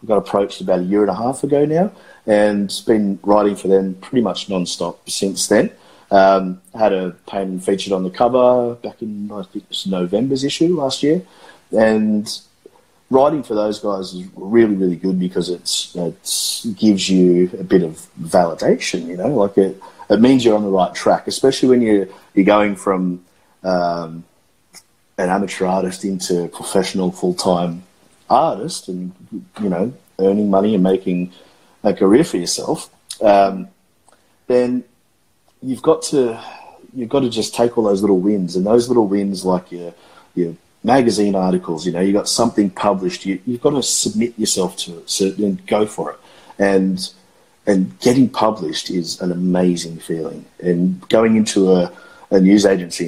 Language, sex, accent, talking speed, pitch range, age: English, male, Australian, 170 wpm, 90-105 Hz, 30-49